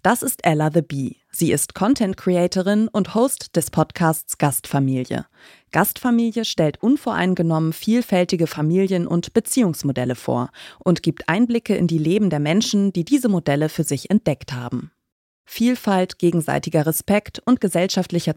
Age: 30-49